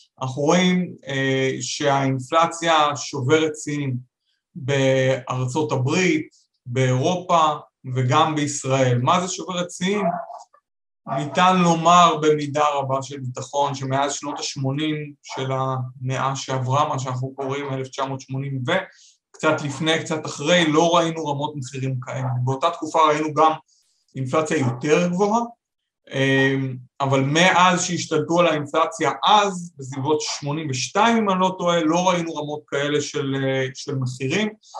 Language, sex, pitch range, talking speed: Hebrew, male, 135-165 Hz, 115 wpm